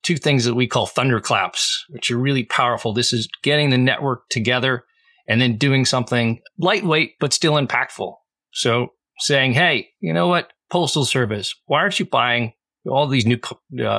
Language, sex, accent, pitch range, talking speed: English, male, American, 110-140 Hz, 170 wpm